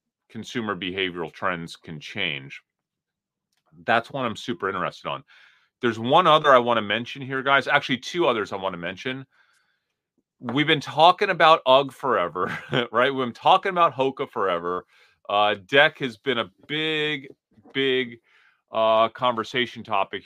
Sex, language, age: male, English, 30-49